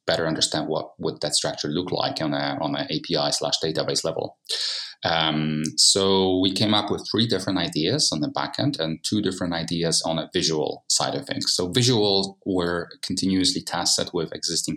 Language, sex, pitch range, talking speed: German, male, 80-90 Hz, 185 wpm